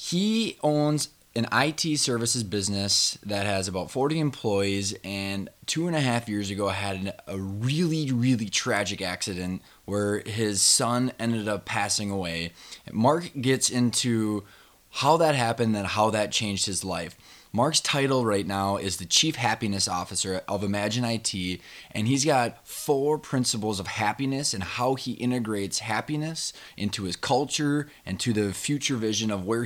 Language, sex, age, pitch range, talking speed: English, male, 20-39, 100-125 Hz, 155 wpm